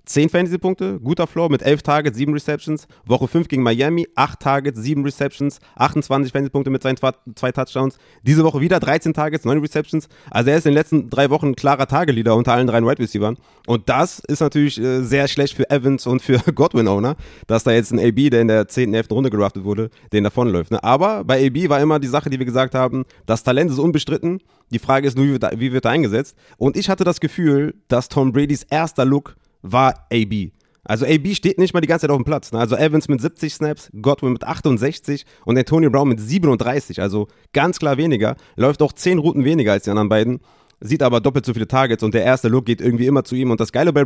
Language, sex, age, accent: German, male, 30-49, German